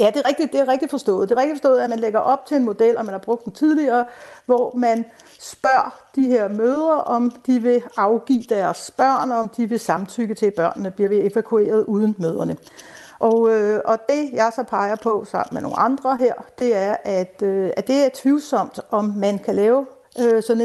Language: Danish